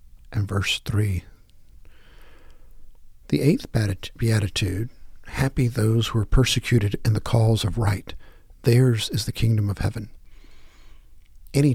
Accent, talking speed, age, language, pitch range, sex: American, 115 wpm, 50-69, English, 105-120 Hz, male